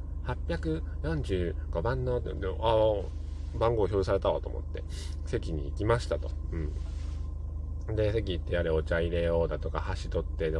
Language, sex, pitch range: Japanese, male, 75-80 Hz